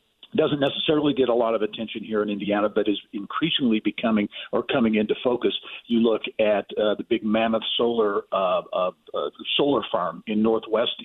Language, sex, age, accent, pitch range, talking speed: English, male, 50-69, American, 105-120 Hz, 180 wpm